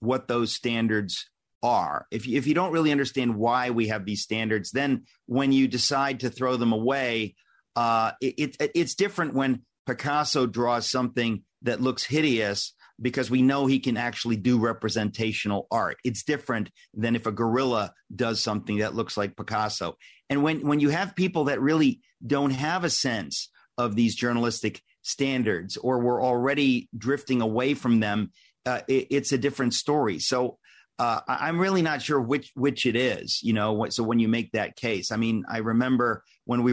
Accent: American